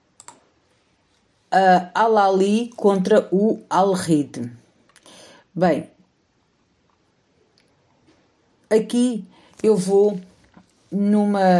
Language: Portuguese